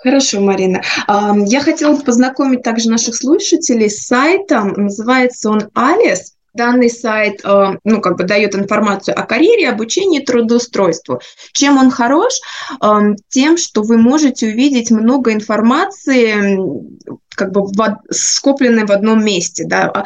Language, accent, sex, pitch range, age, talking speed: Russian, native, female, 200-270 Hz, 20-39, 125 wpm